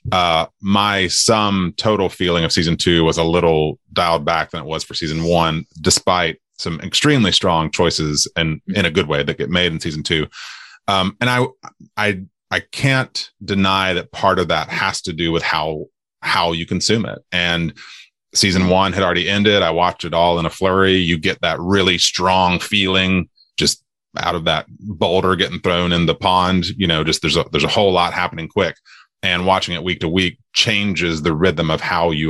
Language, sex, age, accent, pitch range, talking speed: English, male, 30-49, American, 80-95 Hz, 200 wpm